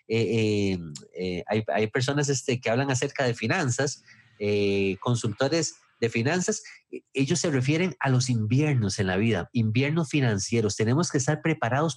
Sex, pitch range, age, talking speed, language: male, 115-155 Hz, 30-49, 155 wpm, English